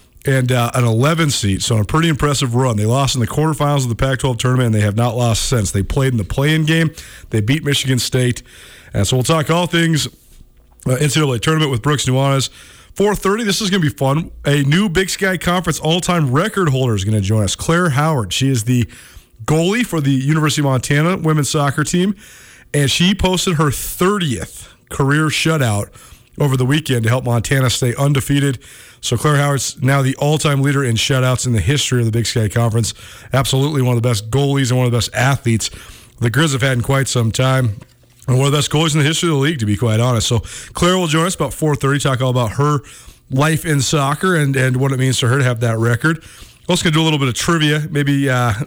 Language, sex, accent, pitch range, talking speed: English, male, American, 120-150 Hz, 230 wpm